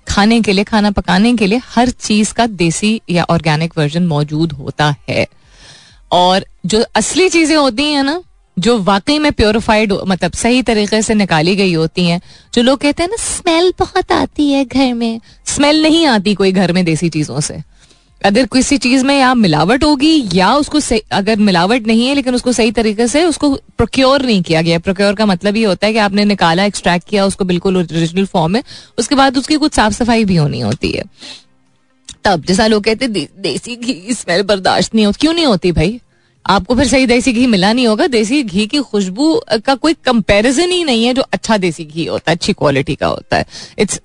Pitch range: 185-260 Hz